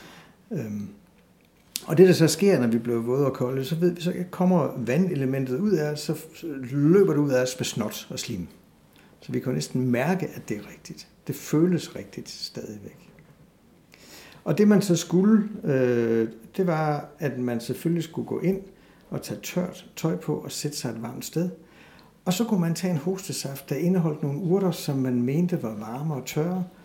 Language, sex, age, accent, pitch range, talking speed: Danish, male, 60-79, native, 120-170 Hz, 195 wpm